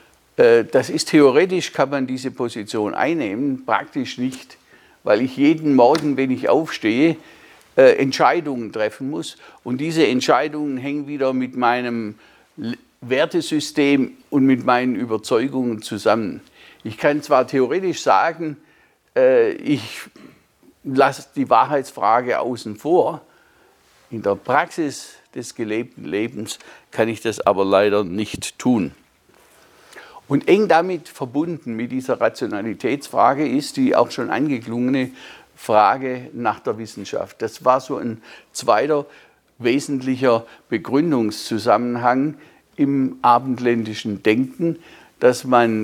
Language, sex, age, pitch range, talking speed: German, male, 50-69, 115-150 Hz, 110 wpm